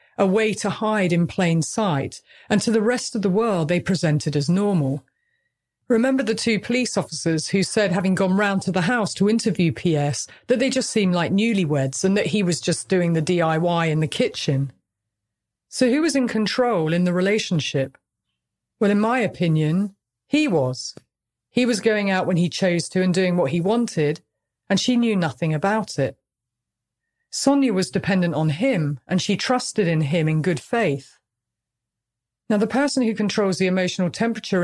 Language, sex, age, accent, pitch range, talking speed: English, female, 40-59, British, 155-215 Hz, 180 wpm